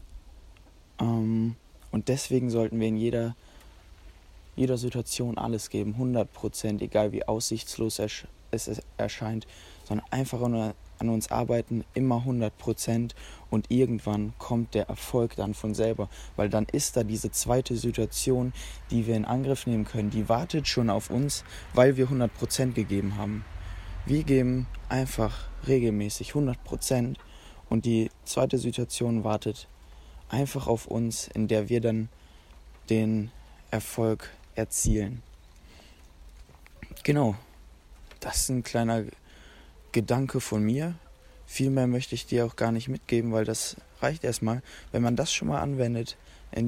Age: 20-39